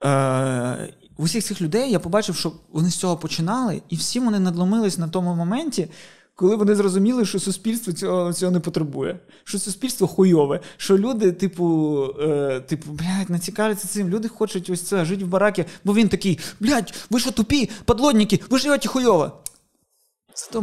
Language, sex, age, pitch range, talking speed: Ukrainian, male, 20-39, 170-220 Hz, 165 wpm